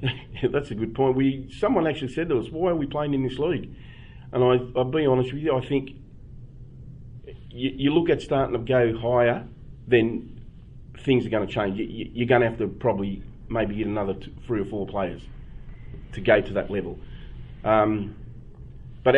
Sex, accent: male, Australian